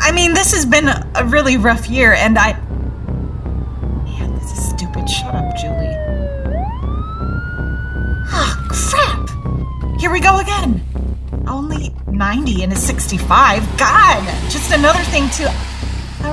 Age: 30-49